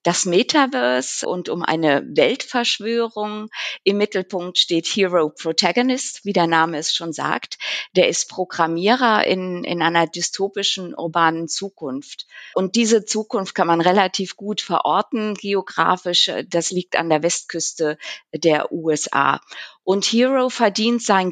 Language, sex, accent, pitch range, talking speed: German, female, German, 165-215 Hz, 130 wpm